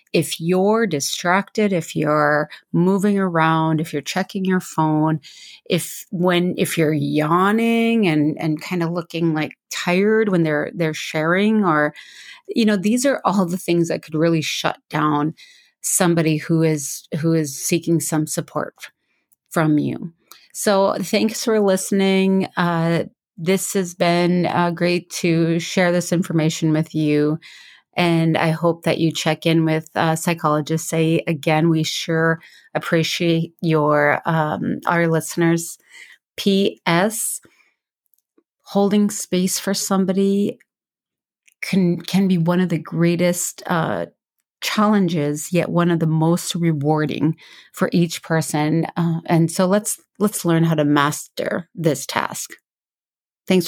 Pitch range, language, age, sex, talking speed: 160-190 Hz, English, 30-49, female, 135 wpm